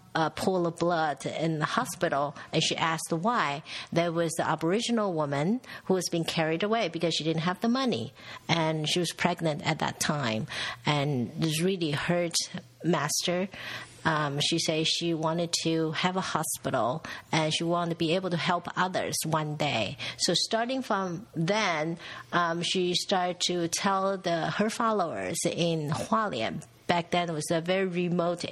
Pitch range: 160-195 Hz